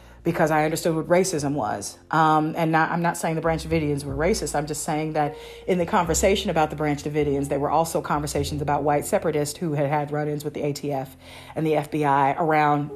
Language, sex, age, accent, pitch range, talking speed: English, female, 40-59, American, 145-170 Hz, 215 wpm